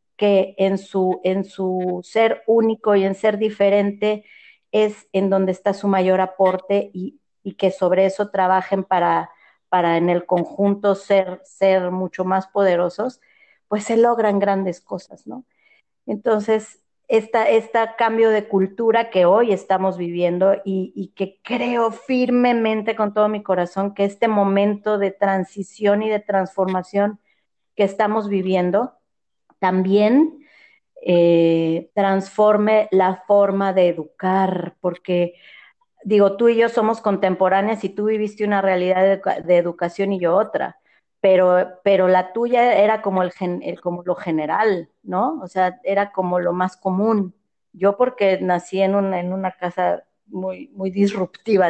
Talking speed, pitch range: 140 wpm, 185-210 Hz